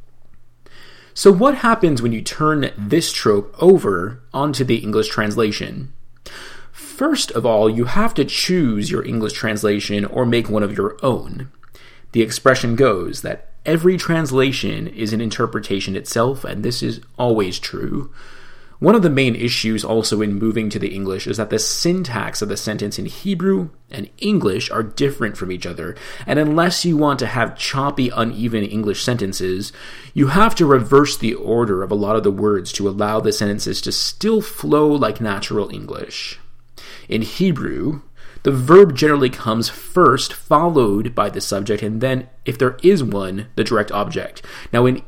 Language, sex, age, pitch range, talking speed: English, male, 30-49, 105-145 Hz, 165 wpm